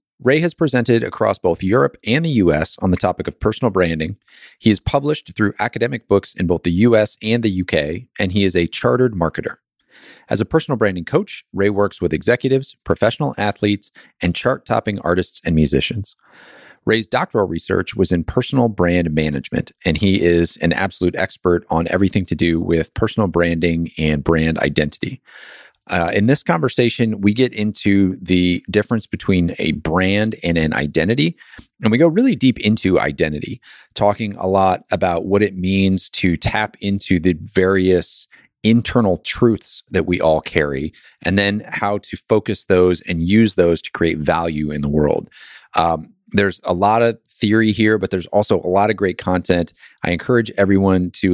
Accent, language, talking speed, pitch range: American, English, 175 wpm, 85-110 Hz